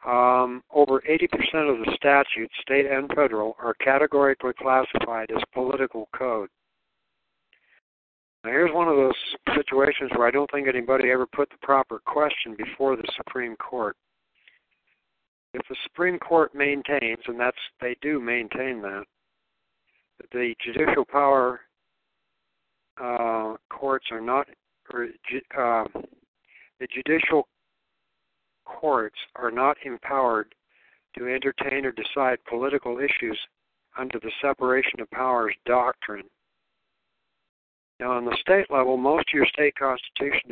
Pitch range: 115-140 Hz